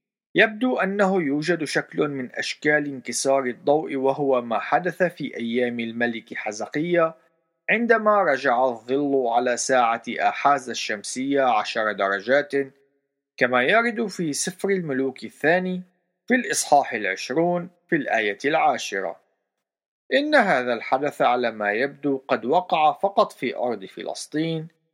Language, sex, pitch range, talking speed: Arabic, male, 125-180 Hz, 115 wpm